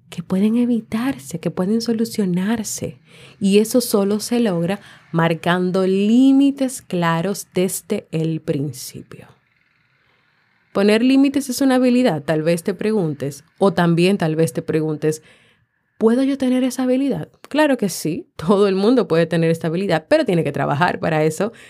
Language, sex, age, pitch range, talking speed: Spanish, female, 20-39, 165-220 Hz, 145 wpm